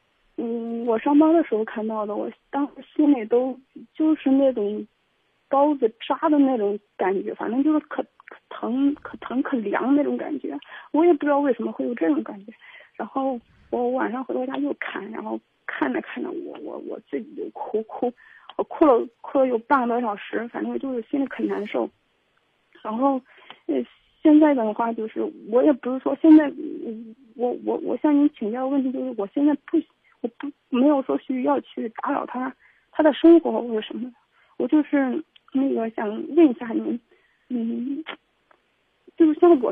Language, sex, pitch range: Chinese, female, 240-310 Hz